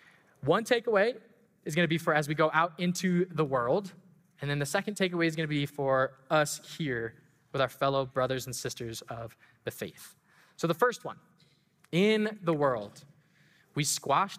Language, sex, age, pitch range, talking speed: English, male, 20-39, 135-175 Hz, 175 wpm